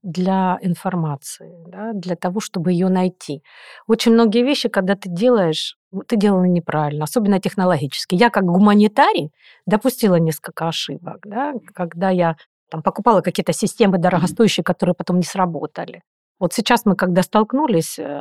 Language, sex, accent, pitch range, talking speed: Russian, female, native, 175-215 Hz, 130 wpm